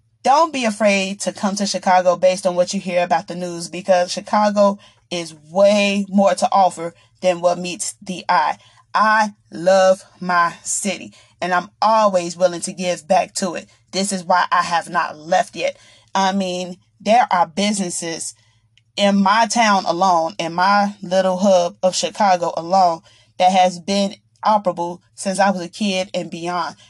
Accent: American